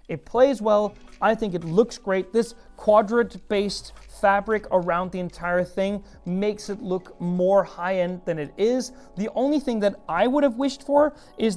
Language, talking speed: English, 180 wpm